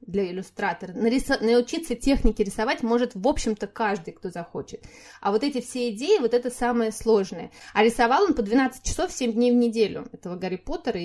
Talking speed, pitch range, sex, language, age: 180 wpm, 215-265 Hz, female, Russian, 20-39